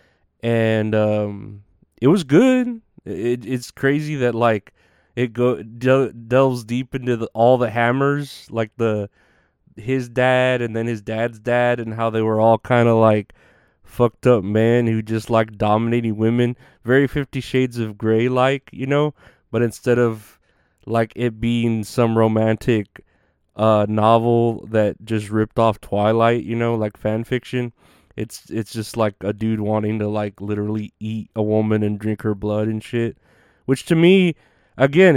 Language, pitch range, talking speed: English, 110-130 Hz, 165 wpm